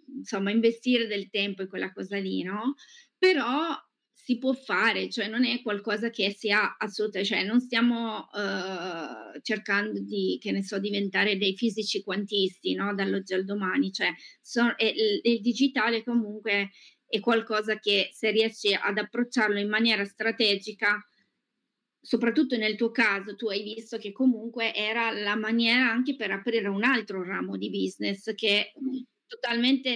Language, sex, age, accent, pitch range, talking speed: Italian, female, 20-39, native, 205-250 Hz, 150 wpm